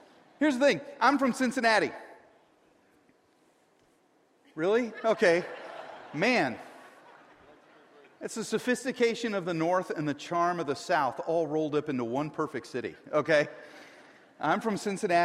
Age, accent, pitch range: 40-59, American, 155-260 Hz